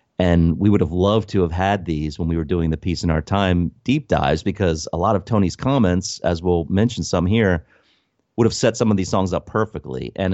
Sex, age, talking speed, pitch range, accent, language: male, 30-49, 240 wpm, 80-105 Hz, American, English